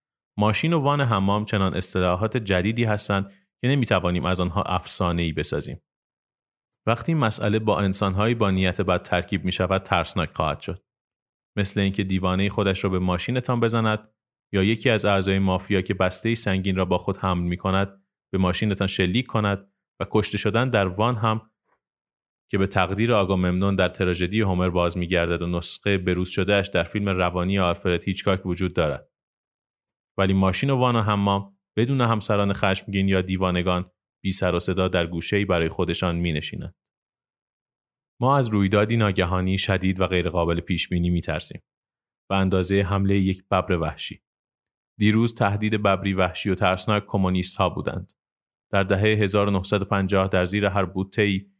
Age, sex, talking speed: 30-49, male, 150 wpm